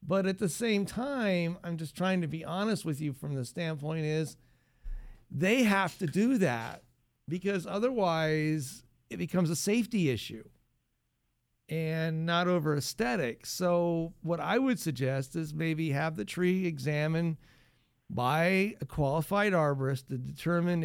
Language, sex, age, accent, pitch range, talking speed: English, male, 50-69, American, 145-185 Hz, 145 wpm